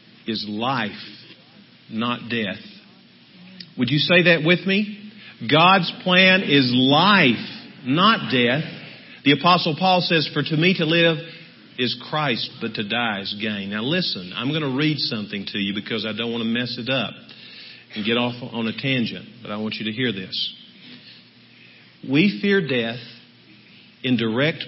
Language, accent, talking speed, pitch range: English, American, 165 wpm, 125-190 Hz